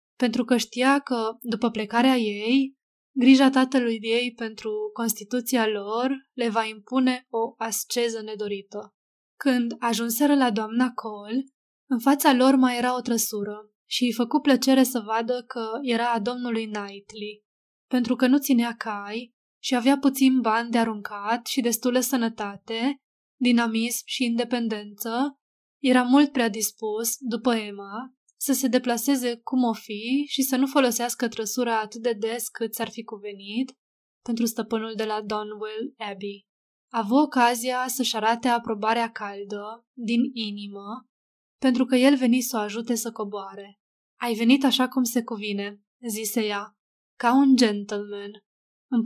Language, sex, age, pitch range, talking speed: Romanian, female, 20-39, 220-255 Hz, 145 wpm